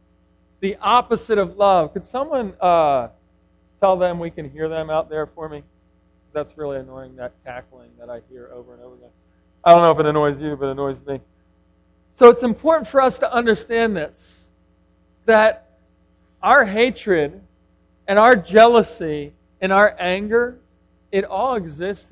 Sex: male